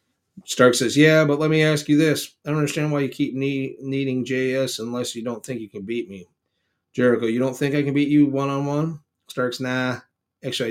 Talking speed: 215 wpm